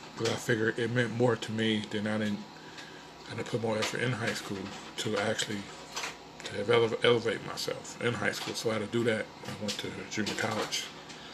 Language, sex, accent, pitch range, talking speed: English, male, American, 105-115 Hz, 205 wpm